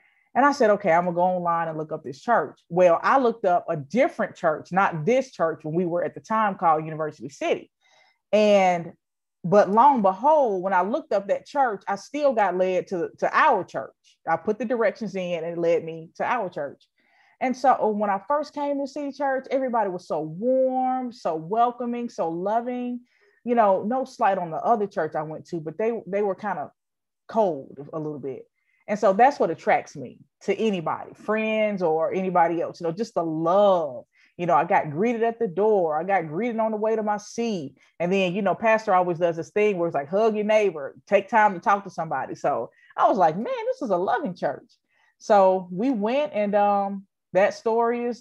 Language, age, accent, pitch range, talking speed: English, 30-49, American, 175-235 Hz, 220 wpm